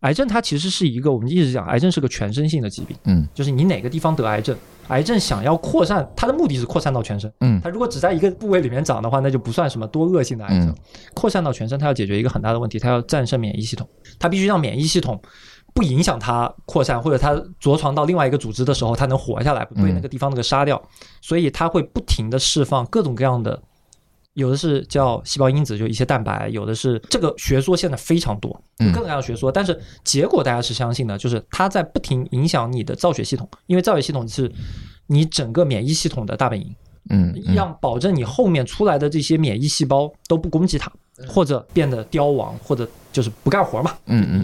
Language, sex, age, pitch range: Chinese, male, 20-39, 115-160 Hz